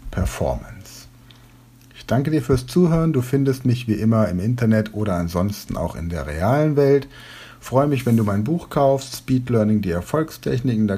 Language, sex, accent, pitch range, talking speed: German, male, German, 100-130 Hz, 175 wpm